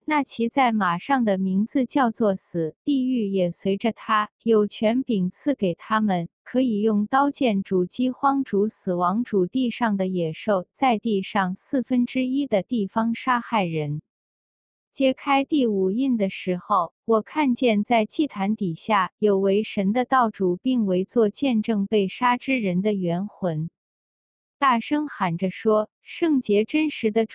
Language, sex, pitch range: Indonesian, female, 195-255 Hz